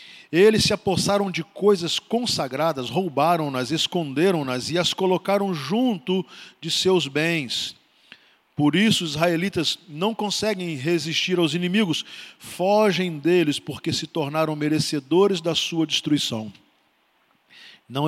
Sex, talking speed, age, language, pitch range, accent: male, 115 wpm, 40-59, Portuguese, 155-190 Hz, Brazilian